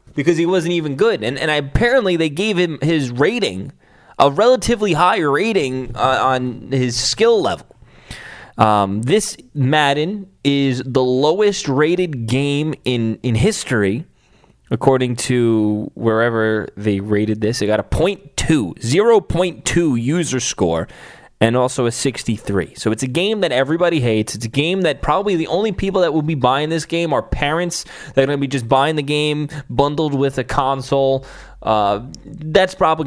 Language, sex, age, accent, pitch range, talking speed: English, male, 20-39, American, 115-155 Hz, 160 wpm